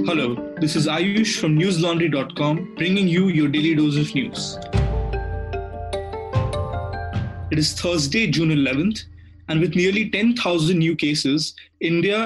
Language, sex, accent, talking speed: English, male, Indian, 120 wpm